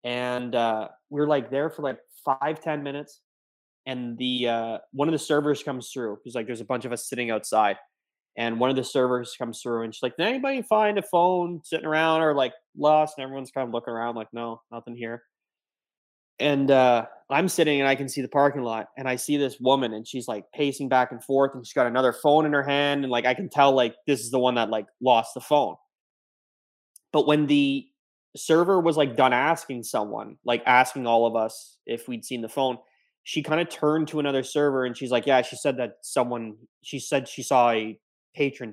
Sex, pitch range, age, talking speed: male, 120-145 Hz, 20-39, 225 wpm